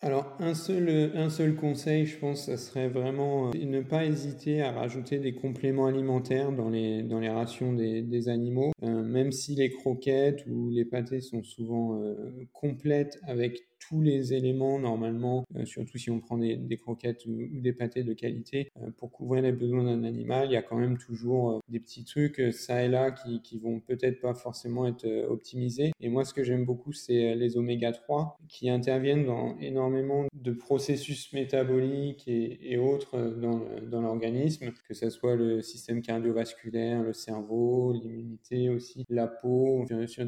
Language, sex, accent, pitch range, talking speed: French, male, French, 115-135 Hz, 190 wpm